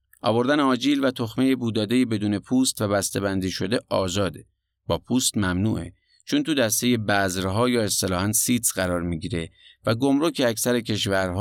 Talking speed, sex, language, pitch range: 155 wpm, male, Persian, 95-125 Hz